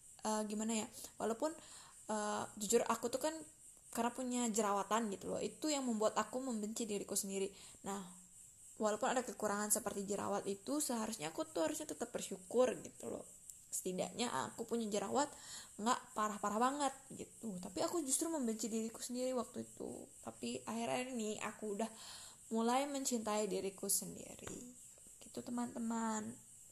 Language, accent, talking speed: Indonesian, native, 140 wpm